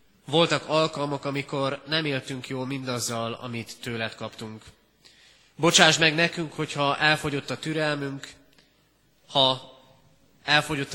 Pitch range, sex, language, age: 125-150 Hz, male, Hungarian, 30-49